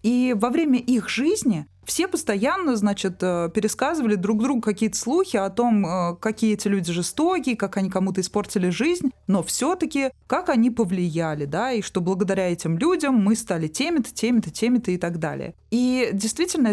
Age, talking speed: 20-39, 165 wpm